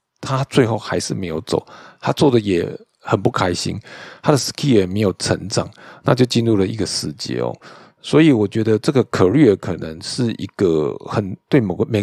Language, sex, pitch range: Chinese, male, 95-115 Hz